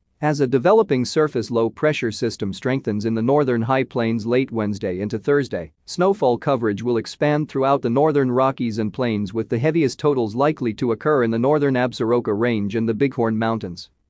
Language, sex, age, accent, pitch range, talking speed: English, male, 40-59, American, 110-140 Hz, 180 wpm